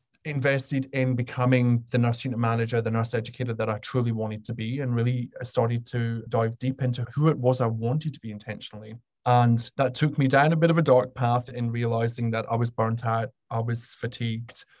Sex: male